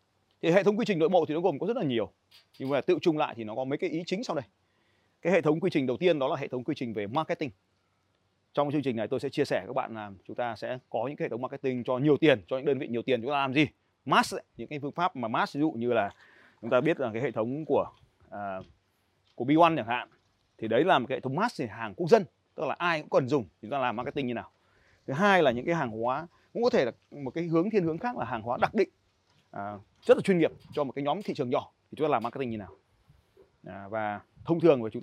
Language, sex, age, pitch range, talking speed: Vietnamese, male, 20-39, 105-155 Hz, 295 wpm